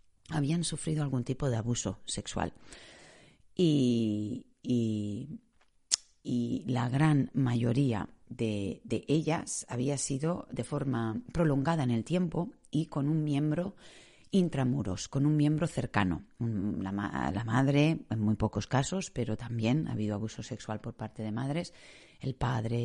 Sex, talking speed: female, 140 wpm